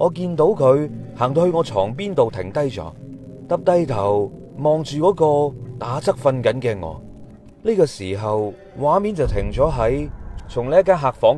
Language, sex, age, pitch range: Chinese, male, 30-49, 100-155 Hz